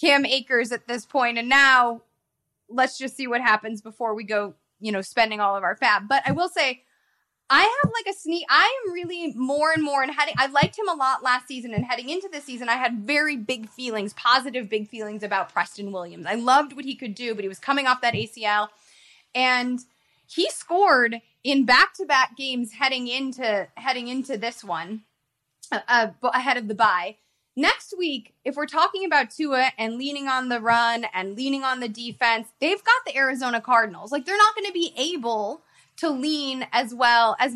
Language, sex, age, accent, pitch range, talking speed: English, female, 20-39, American, 230-295 Hz, 200 wpm